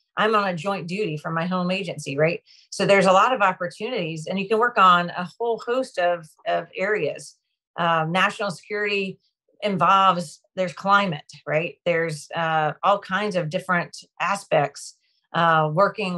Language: English